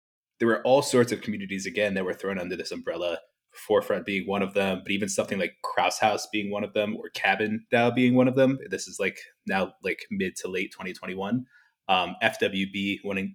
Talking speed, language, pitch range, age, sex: 210 wpm, English, 100-125 Hz, 20-39, male